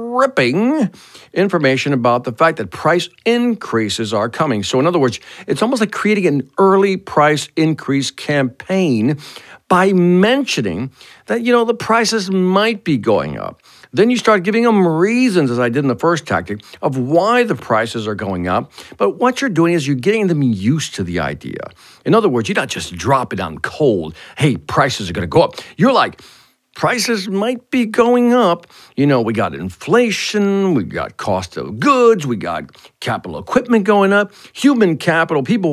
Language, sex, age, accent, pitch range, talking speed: English, male, 50-69, American, 130-215 Hz, 185 wpm